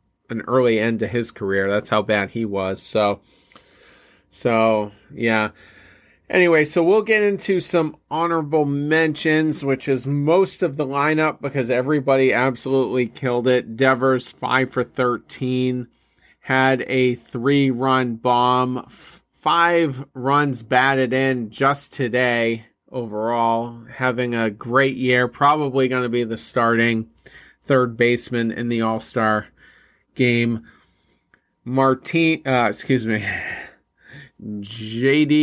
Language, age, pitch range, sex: English, 30-49, 115-135 Hz, male